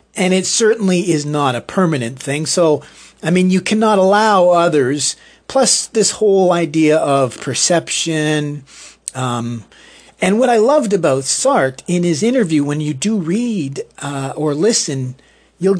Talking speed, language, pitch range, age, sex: 150 wpm, English, 150-195 Hz, 50-69, male